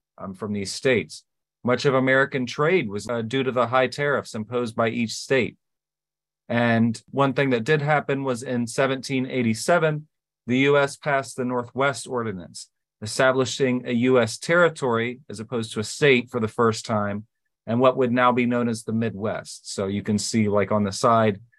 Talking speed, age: 180 wpm, 30-49